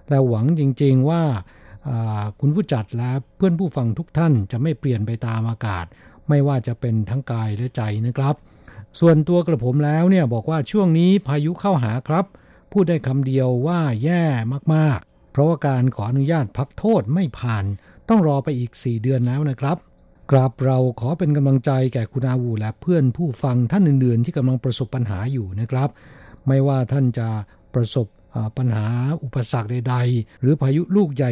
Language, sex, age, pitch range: Thai, male, 60-79, 120-150 Hz